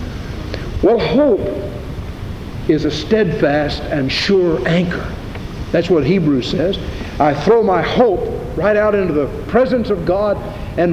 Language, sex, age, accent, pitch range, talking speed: English, male, 60-79, American, 110-155 Hz, 130 wpm